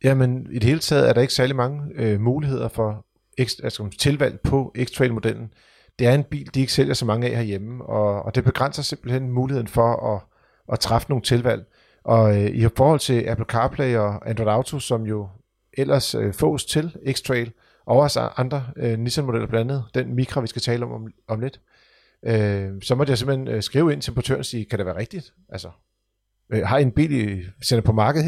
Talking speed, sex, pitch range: 210 wpm, male, 110-130 Hz